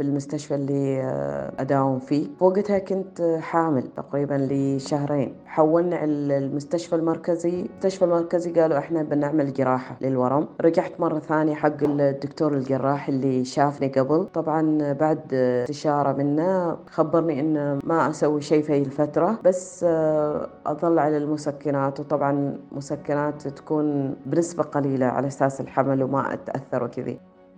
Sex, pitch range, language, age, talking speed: female, 140-165 Hz, Arabic, 30-49, 120 wpm